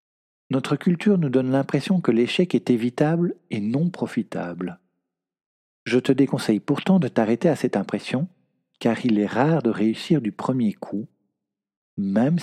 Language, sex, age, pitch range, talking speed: French, male, 50-69, 100-160 Hz, 150 wpm